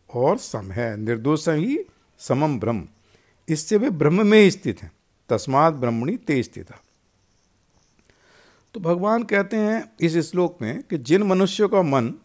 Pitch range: 115-185 Hz